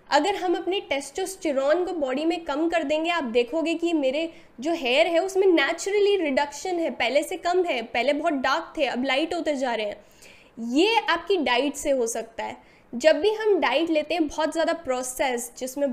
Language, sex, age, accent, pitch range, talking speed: Hindi, female, 10-29, native, 265-330 Hz, 195 wpm